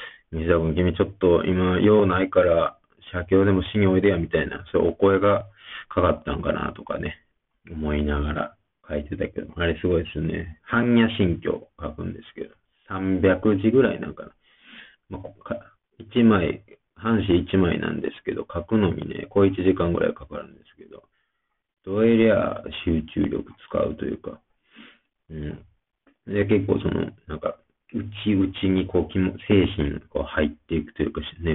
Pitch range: 80-100 Hz